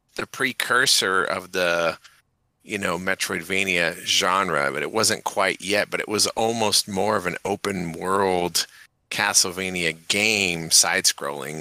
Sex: male